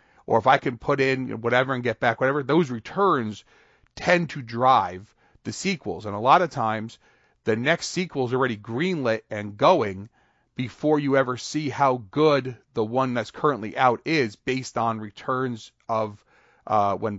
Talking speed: 170 wpm